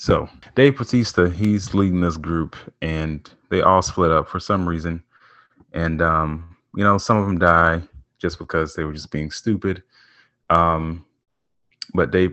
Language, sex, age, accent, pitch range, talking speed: English, male, 30-49, American, 80-100 Hz, 160 wpm